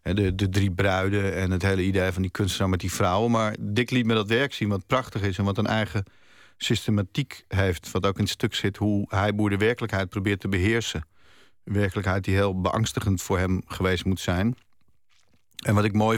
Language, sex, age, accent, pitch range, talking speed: Dutch, male, 50-69, Dutch, 95-115 Hz, 210 wpm